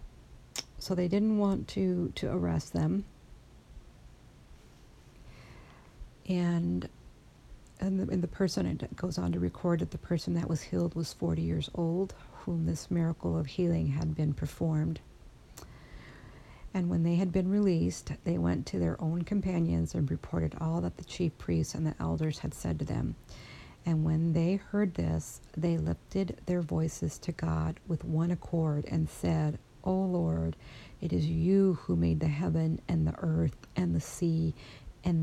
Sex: female